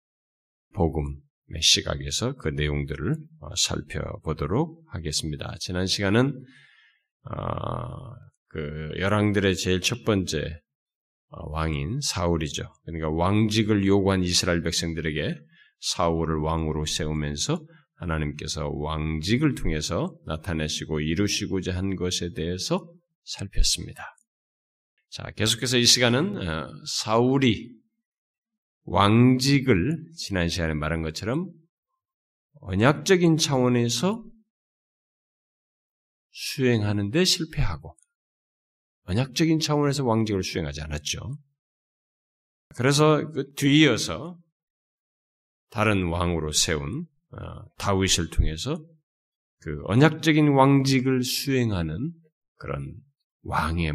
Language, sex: Korean, male